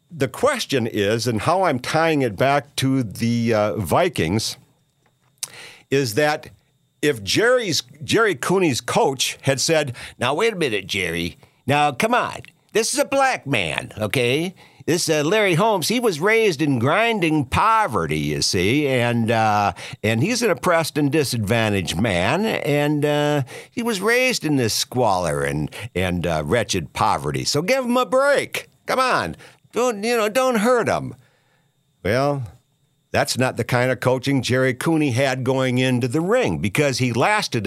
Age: 60-79